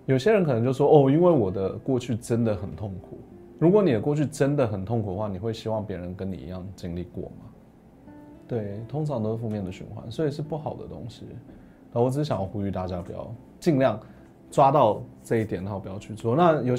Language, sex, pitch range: Chinese, male, 100-130 Hz